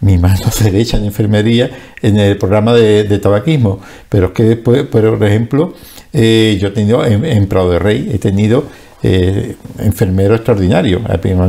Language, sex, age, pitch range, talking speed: Spanish, male, 50-69, 100-120 Hz, 165 wpm